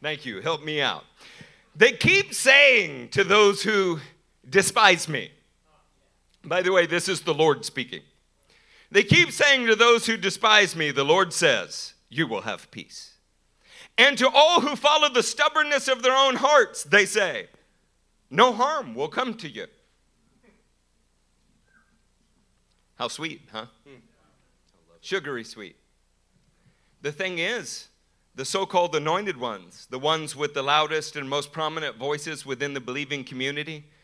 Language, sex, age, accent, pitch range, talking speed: English, male, 50-69, American, 140-205 Hz, 145 wpm